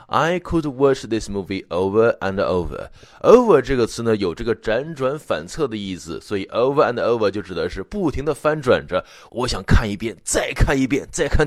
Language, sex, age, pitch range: Chinese, male, 20-39, 100-150 Hz